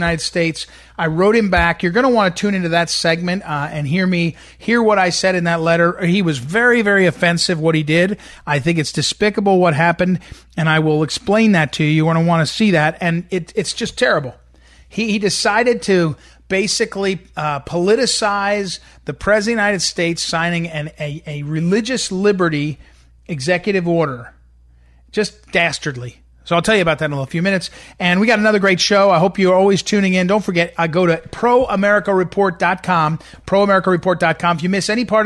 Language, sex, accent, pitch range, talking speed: English, male, American, 160-200 Hz, 195 wpm